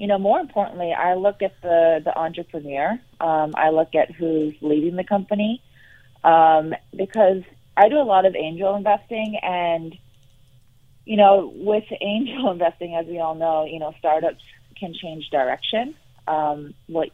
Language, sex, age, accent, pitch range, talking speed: English, female, 30-49, American, 150-170 Hz, 160 wpm